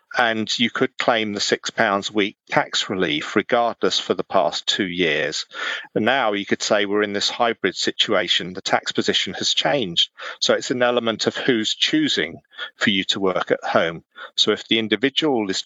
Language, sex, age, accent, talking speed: English, male, 40-59, British, 190 wpm